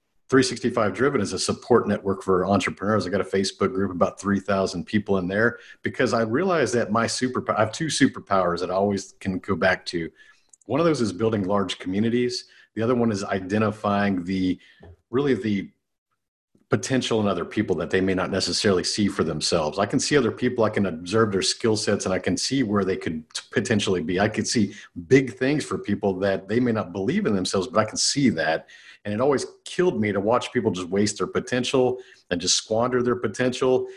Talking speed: 210 wpm